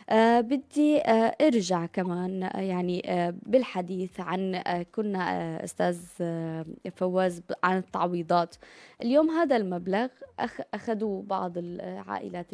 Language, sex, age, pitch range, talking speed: Arabic, female, 20-39, 185-230 Hz, 110 wpm